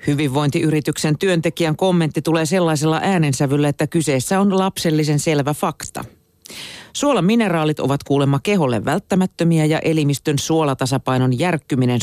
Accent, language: native, Finnish